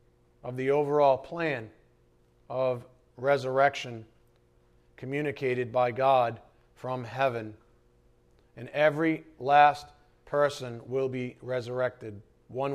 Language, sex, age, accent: English, male, 40-59, American